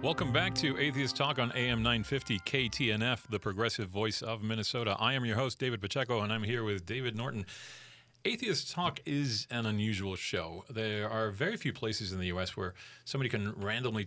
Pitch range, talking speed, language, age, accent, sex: 100-130 Hz, 190 wpm, English, 40-59, American, male